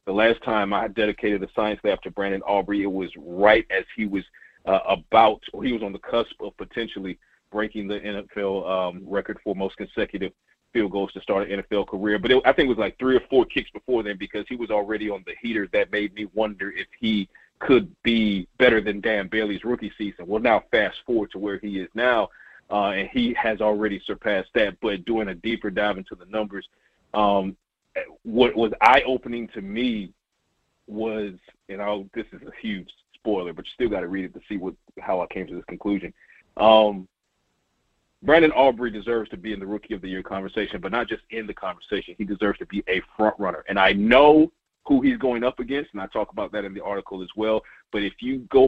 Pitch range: 100-115 Hz